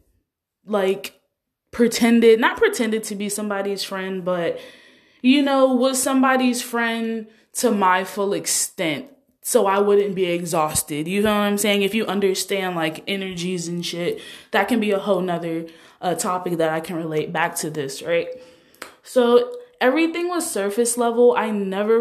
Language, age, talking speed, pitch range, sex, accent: English, 20-39, 160 wpm, 190-240 Hz, female, American